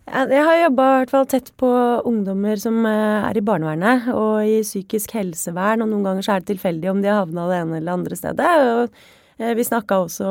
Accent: Swedish